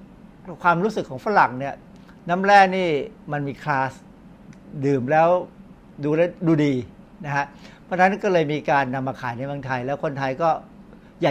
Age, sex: 60-79, male